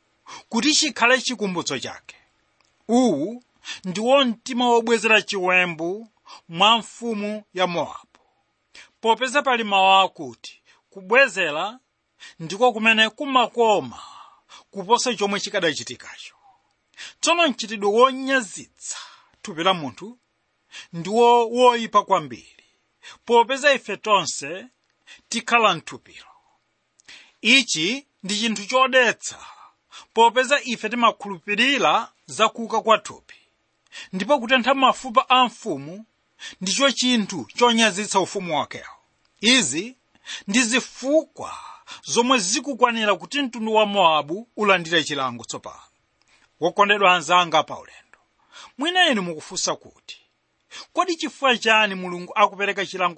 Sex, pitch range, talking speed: male, 195-255 Hz, 95 wpm